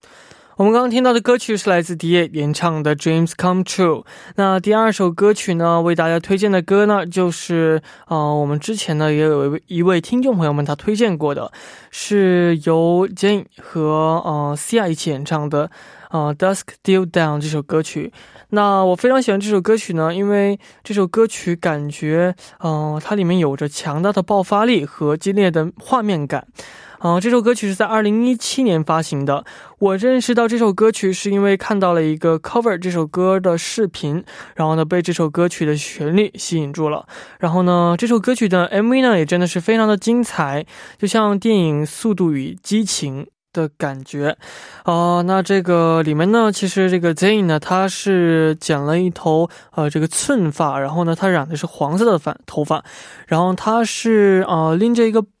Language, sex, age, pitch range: Korean, male, 20-39, 160-205 Hz